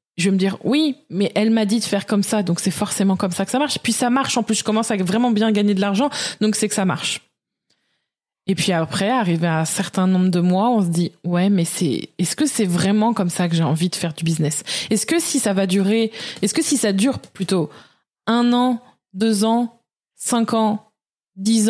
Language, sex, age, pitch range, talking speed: French, female, 20-39, 190-235 Hz, 240 wpm